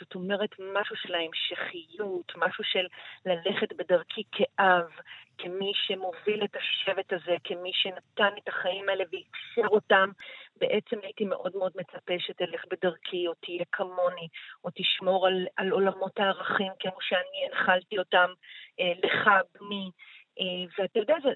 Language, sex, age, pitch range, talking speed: Hebrew, female, 40-59, 185-235 Hz, 140 wpm